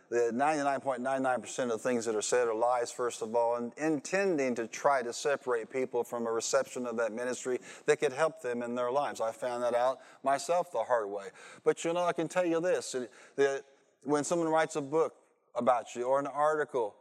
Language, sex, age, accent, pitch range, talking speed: English, male, 40-59, American, 135-170 Hz, 210 wpm